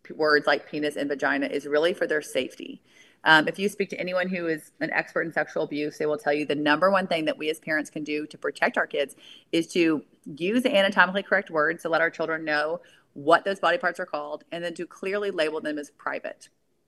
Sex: female